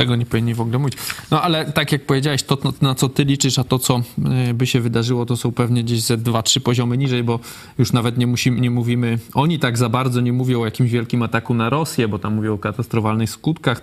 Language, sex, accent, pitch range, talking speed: Polish, male, native, 120-145 Hz, 245 wpm